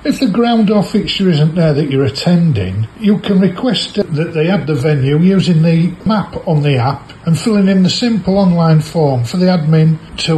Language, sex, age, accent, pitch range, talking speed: English, male, 50-69, British, 140-180 Hz, 200 wpm